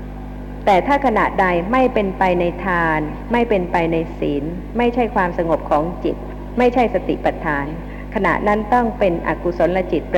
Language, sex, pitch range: Thai, female, 185-245 Hz